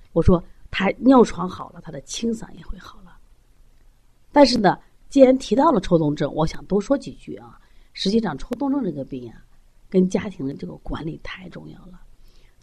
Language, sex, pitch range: Chinese, female, 160-225 Hz